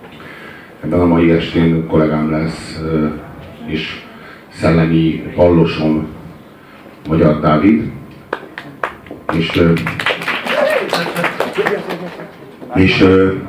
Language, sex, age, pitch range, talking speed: Hungarian, male, 50-69, 80-90 Hz, 55 wpm